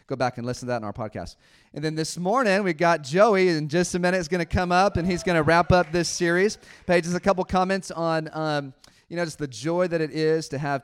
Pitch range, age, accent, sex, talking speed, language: 130-170 Hz, 30-49, American, male, 275 wpm, English